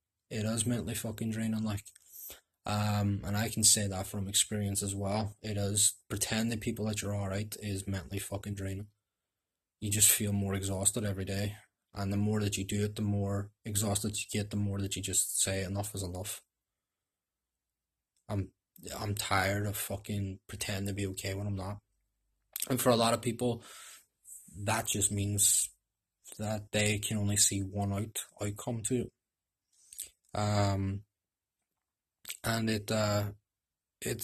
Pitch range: 100-105 Hz